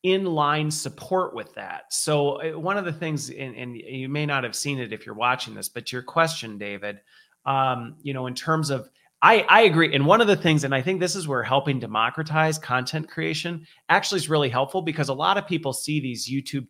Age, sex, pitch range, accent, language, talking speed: 30-49, male, 125-160 Hz, American, English, 225 wpm